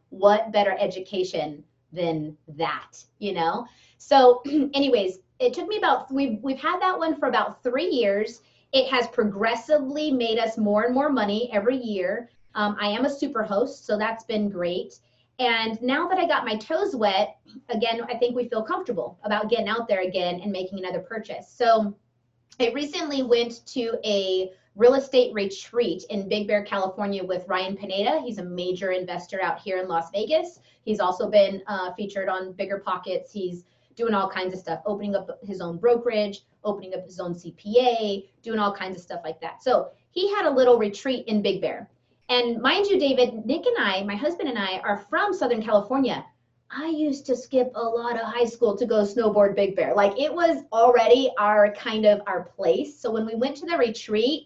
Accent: American